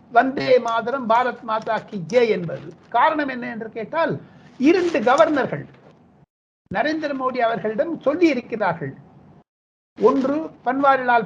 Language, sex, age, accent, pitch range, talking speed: Tamil, male, 60-79, native, 225-275 Hz, 105 wpm